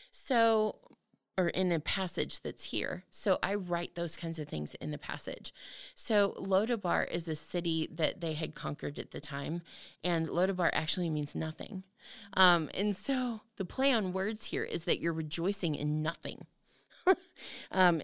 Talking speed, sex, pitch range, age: 165 wpm, female, 155-190 Hz, 20-39